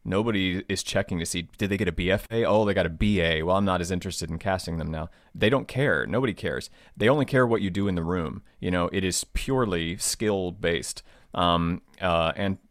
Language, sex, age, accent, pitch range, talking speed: English, male, 30-49, American, 85-105 Hz, 225 wpm